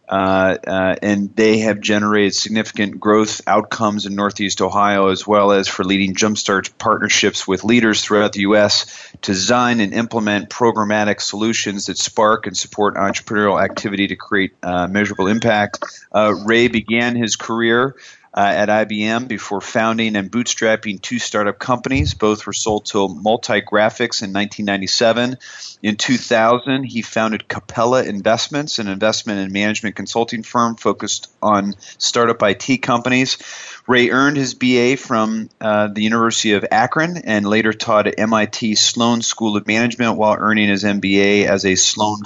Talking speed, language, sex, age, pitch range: 150 wpm, English, male, 30-49, 100-115 Hz